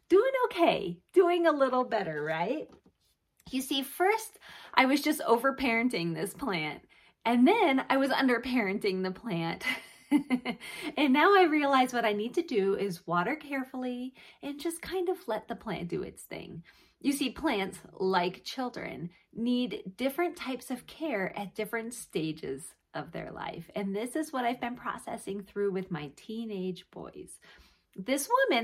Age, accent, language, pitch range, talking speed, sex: 30-49, American, English, 205-295 Hz, 155 wpm, female